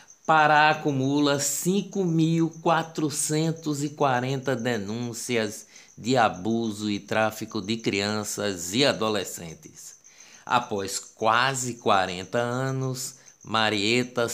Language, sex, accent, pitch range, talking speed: Portuguese, male, Brazilian, 110-145 Hz, 70 wpm